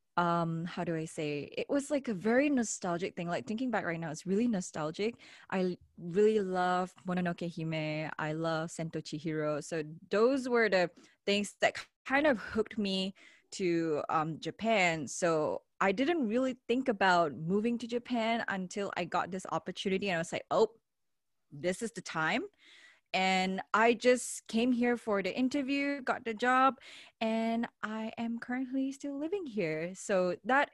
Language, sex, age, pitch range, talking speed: English, female, 20-39, 165-230 Hz, 165 wpm